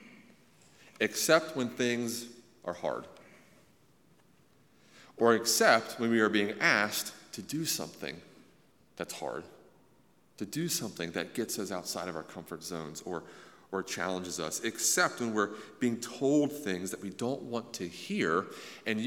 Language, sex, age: English, male, 40-59